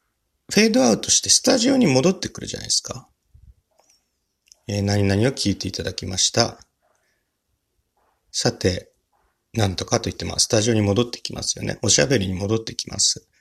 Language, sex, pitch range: Japanese, male, 95-130 Hz